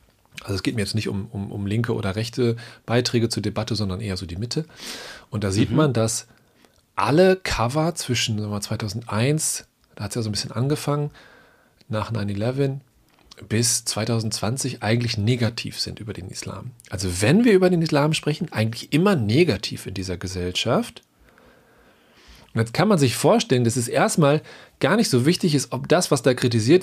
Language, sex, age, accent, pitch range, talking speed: German, male, 40-59, German, 105-140 Hz, 175 wpm